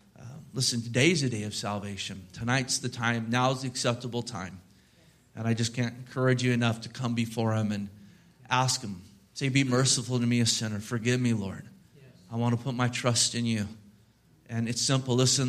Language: English